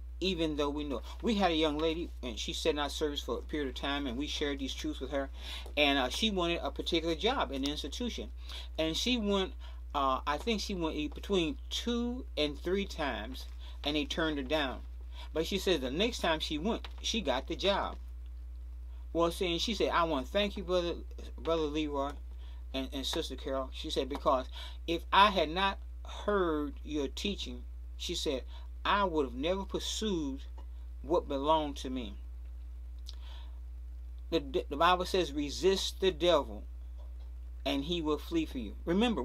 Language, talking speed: English, 180 wpm